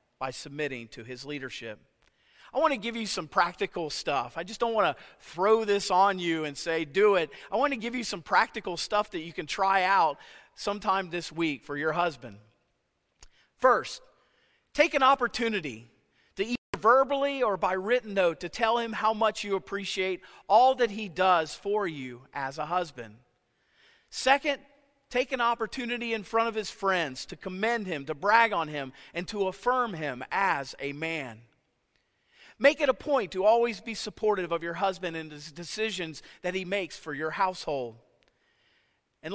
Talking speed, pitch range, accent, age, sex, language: 175 wpm, 150-220 Hz, American, 40-59, male, English